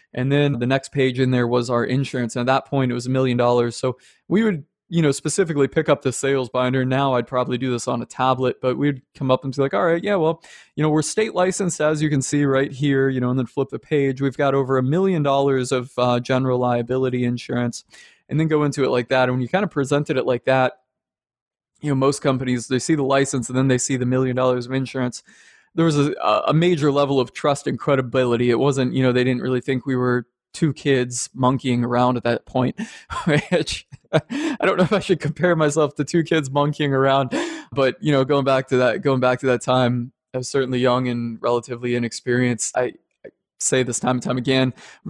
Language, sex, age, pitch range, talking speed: English, male, 20-39, 125-155 Hz, 235 wpm